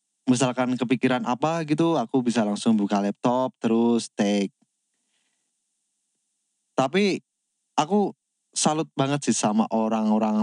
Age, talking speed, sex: 20-39, 105 wpm, male